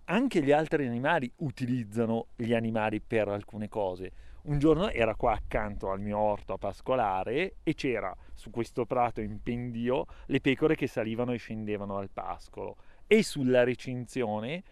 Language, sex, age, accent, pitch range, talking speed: Italian, male, 40-59, native, 110-140 Hz, 155 wpm